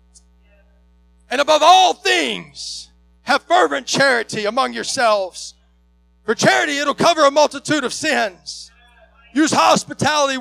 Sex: male